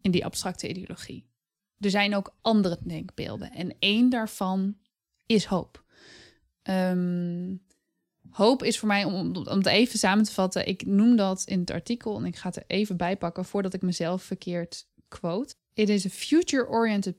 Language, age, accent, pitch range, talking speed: Dutch, 20-39, Dutch, 180-220 Hz, 170 wpm